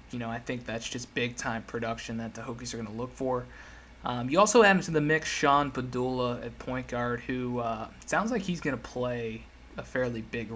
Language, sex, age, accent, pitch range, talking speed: English, male, 20-39, American, 115-135 Hz, 225 wpm